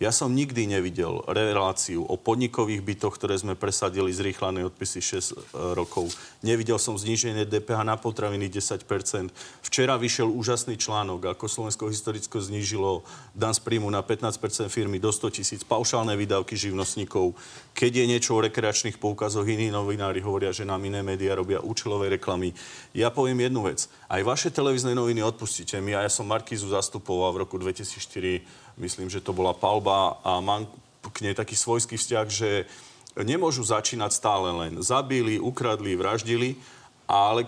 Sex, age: male, 40-59